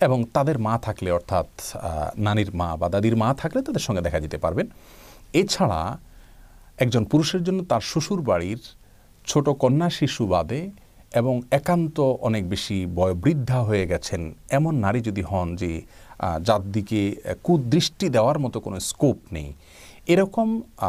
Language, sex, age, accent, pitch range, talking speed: Bengali, male, 40-59, native, 95-140 Hz, 130 wpm